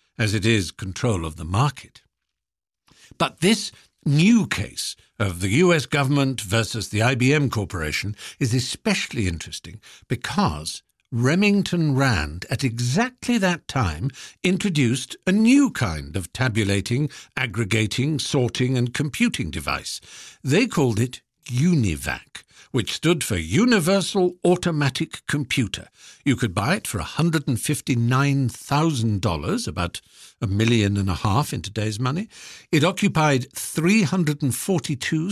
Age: 60-79